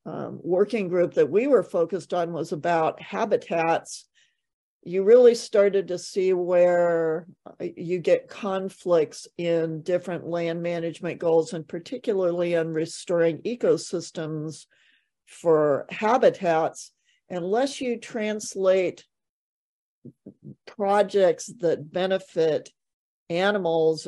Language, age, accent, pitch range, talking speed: English, 50-69, American, 170-205 Hz, 95 wpm